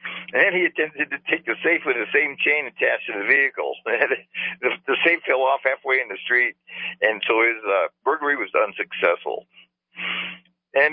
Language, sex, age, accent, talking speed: English, male, 60-79, American, 180 wpm